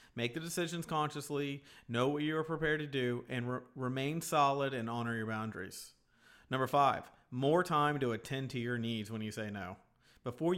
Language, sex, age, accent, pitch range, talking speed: English, male, 40-59, American, 115-145 Hz, 180 wpm